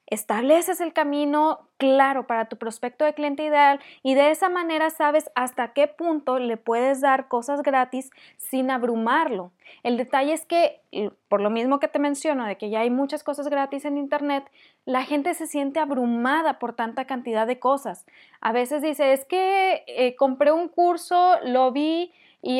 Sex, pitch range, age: female, 250-295 Hz, 20-39